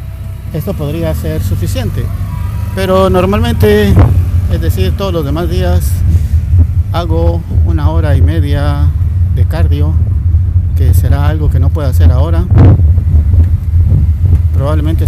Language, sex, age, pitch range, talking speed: Spanish, male, 50-69, 85-95 Hz, 110 wpm